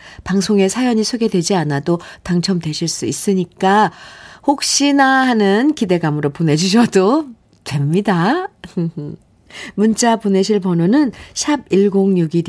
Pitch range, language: 155-220 Hz, Korean